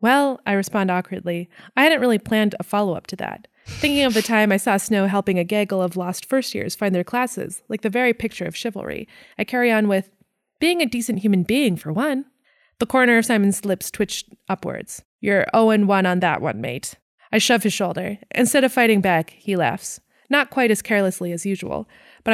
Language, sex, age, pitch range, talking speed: English, female, 20-39, 195-235 Hz, 205 wpm